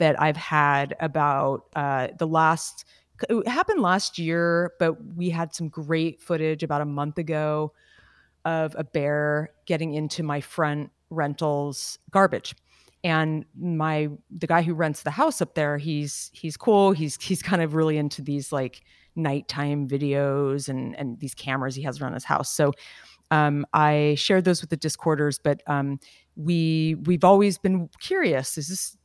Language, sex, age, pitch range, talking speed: English, female, 30-49, 145-170 Hz, 165 wpm